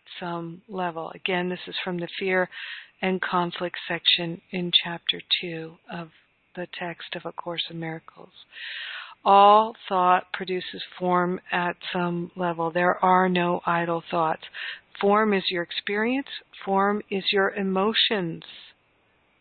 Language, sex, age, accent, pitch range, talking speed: English, female, 50-69, American, 175-205 Hz, 130 wpm